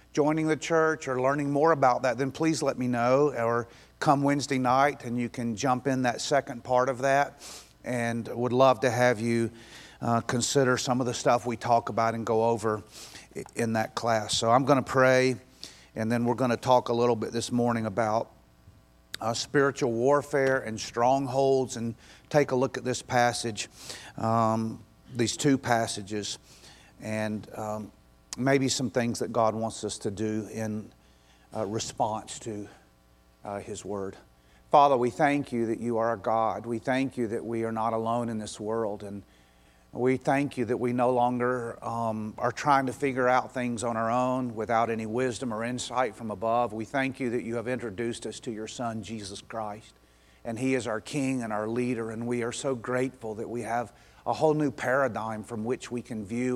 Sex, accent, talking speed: male, American, 195 wpm